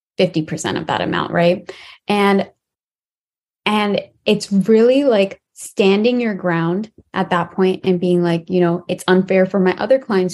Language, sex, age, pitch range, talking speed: English, female, 20-39, 185-225 Hz, 150 wpm